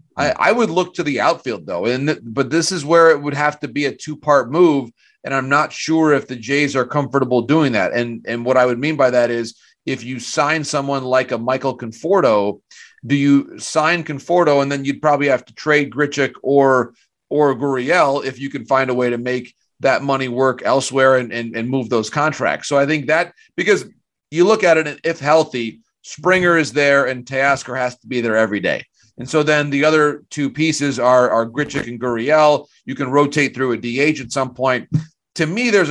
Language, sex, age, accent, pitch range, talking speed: English, male, 30-49, American, 125-150 Hz, 215 wpm